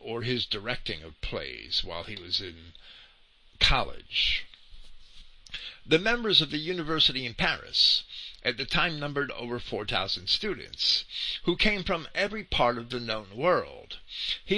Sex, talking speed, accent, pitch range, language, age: male, 140 wpm, American, 115-180 Hz, English, 50-69